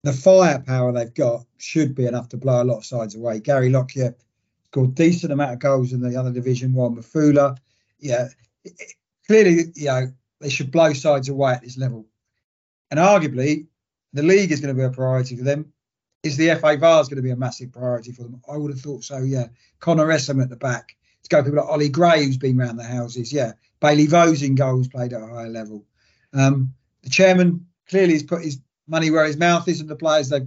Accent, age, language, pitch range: British, 40-59, English, 125-155 Hz